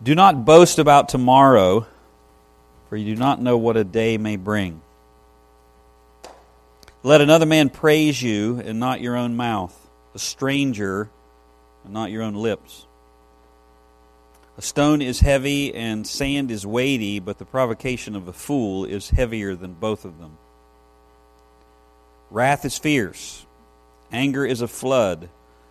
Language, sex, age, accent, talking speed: English, male, 50-69, American, 140 wpm